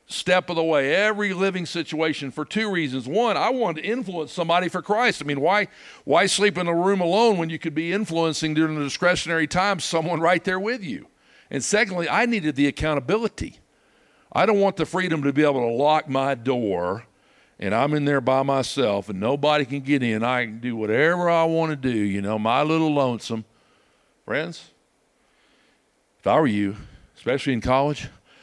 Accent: American